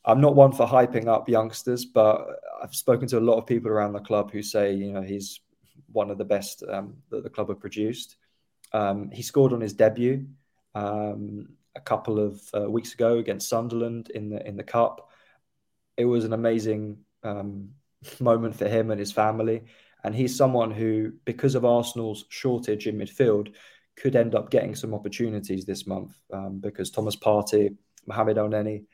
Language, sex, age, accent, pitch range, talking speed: English, male, 20-39, British, 105-115 Hz, 185 wpm